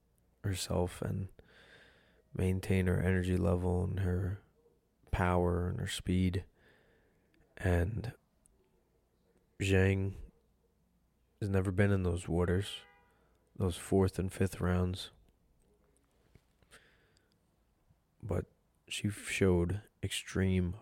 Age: 20-39